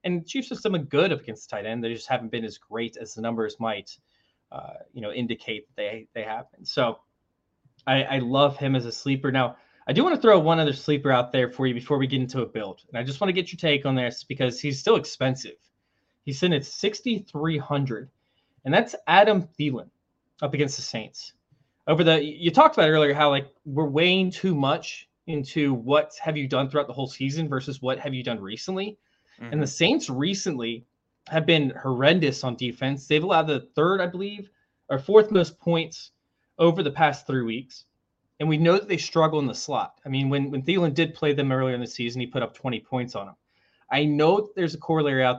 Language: English